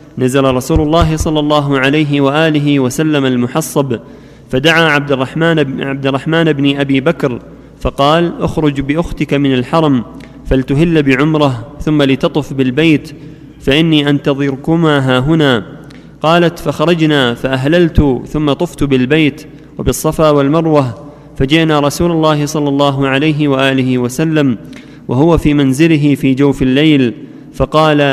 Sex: male